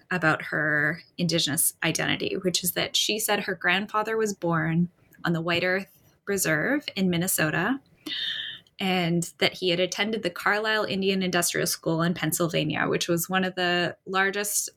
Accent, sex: American, female